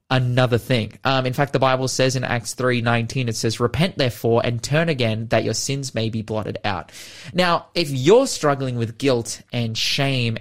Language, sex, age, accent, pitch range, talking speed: English, male, 20-39, Australian, 115-150 Hz, 190 wpm